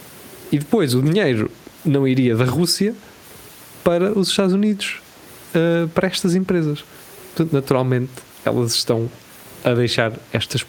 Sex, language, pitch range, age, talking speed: male, Portuguese, 110-140 Hz, 20-39, 130 wpm